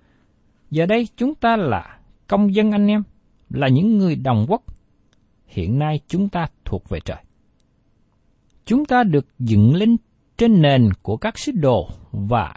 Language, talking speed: Vietnamese, 160 wpm